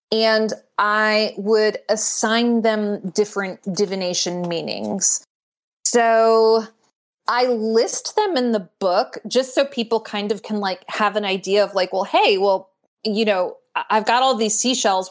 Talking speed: 145 wpm